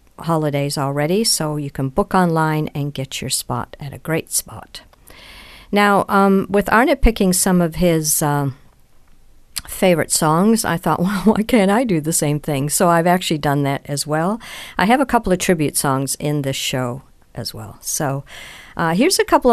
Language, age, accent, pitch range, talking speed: English, 50-69, American, 145-185 Hz, 185 wpm